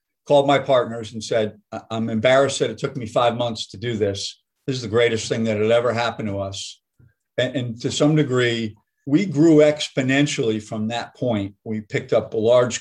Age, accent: 50-69, American